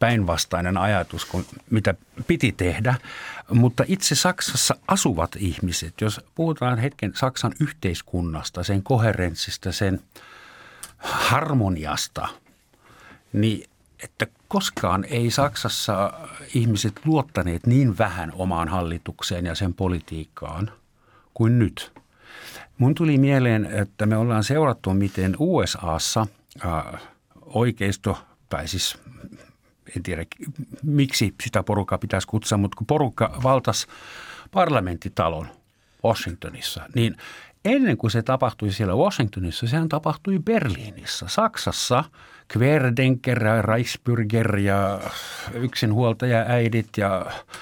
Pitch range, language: 100-130 Hz, Finnish